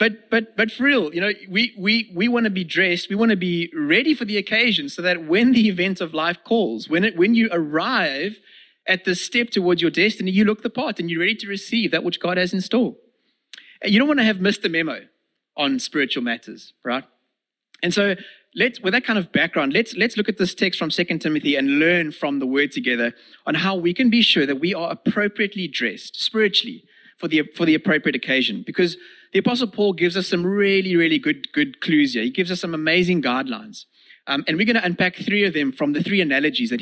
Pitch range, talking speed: 165-235 Hz, 230 wpm